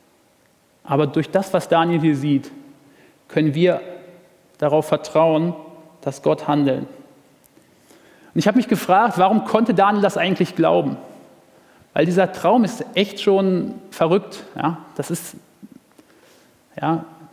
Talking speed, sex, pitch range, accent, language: 125 wpm, male, 155-185 Hz, German, German